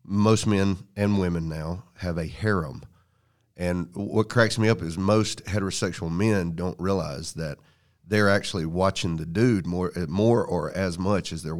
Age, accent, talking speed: 40-59, American, 165 wpm